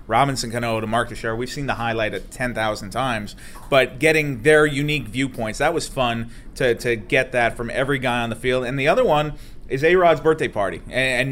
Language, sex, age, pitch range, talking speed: English, male, 30-49, 120-150 Hz, 215 wpm